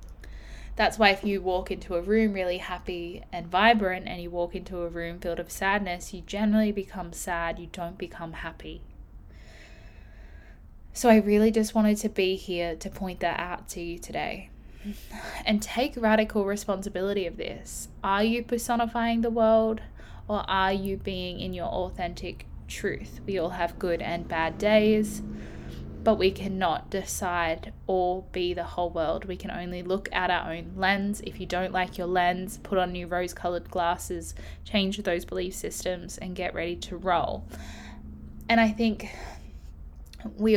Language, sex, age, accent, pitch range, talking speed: English, female, 10-29, Australian, 170-210 Hz, 165 wpm